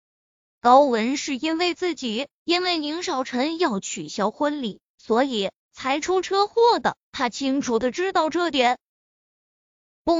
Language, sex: Chinese, female